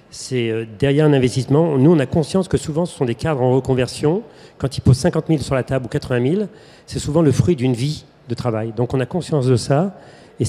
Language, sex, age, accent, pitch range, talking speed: French, male, 40-59, French, 120-150 Hz, 240 wpm